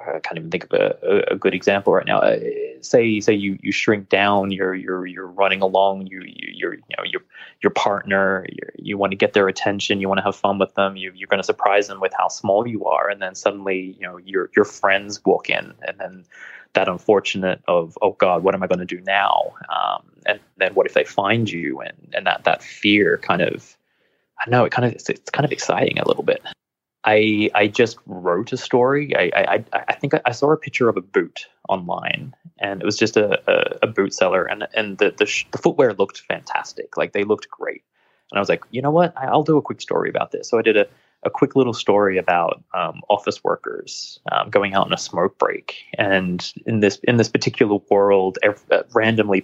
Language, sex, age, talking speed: English, male, 20-39, 235 wpm